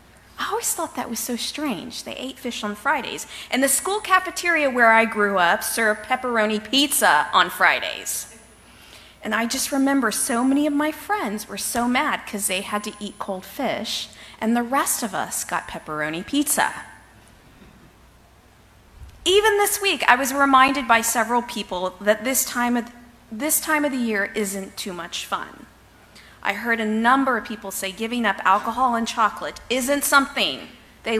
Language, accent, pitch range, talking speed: English, American, 210-275 Hz, 175 wpm